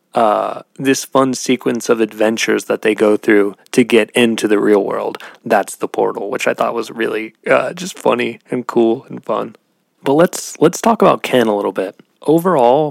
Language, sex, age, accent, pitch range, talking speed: English, male, 20-39, American, 105-125 Hz, 190 wpm